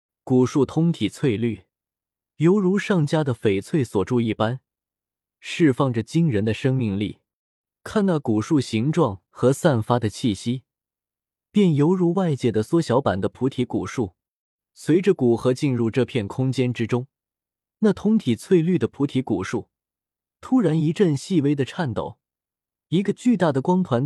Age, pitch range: 20-39, 115-165 Hz